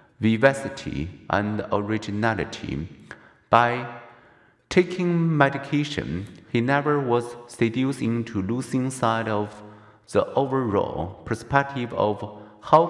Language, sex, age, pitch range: Chinese, male, 50-69, 110-140 Hz